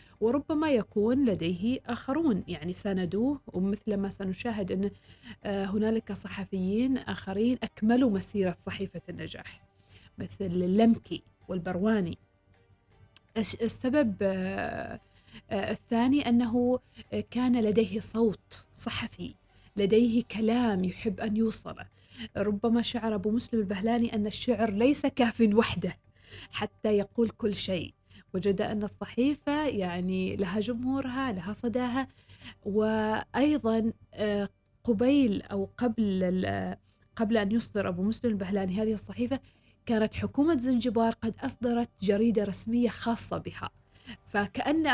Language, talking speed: Arabic, 100 wpm